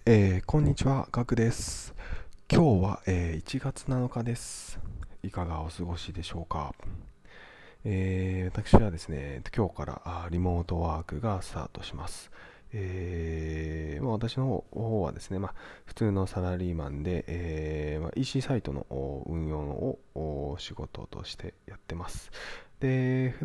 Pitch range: 80-100 Hz